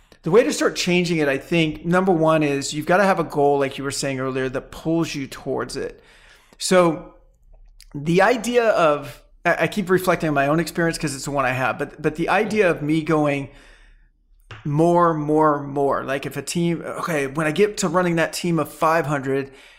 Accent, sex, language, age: American, male, English, 40-59